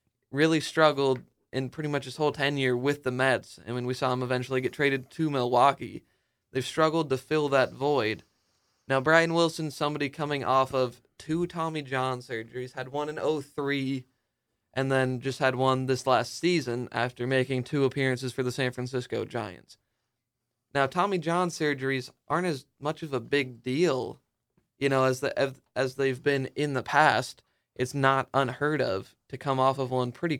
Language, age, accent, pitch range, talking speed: English, 20-39, American, 125-145 Hz, 180 wpm